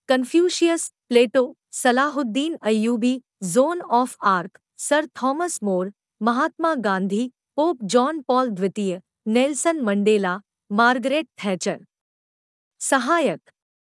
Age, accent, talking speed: 50-69, native, 80 wpm